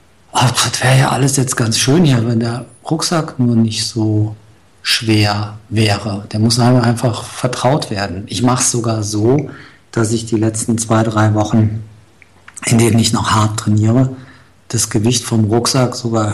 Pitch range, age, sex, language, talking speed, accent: 110-125 Hz, 50-69, male, German, 160 wpm, German